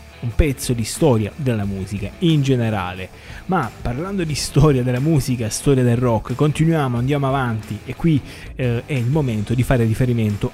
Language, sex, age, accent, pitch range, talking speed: Italian, male, 20-39, native, 110-140 Hz, 165 wpm